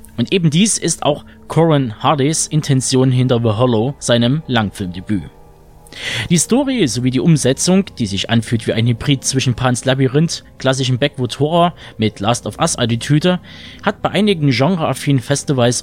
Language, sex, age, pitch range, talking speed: German, male, 20-39, 120-155 Hz, 150 wpm